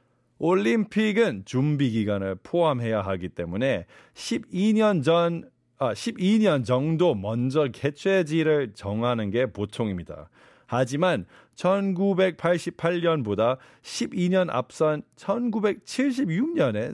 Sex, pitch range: male, 115-185 Hz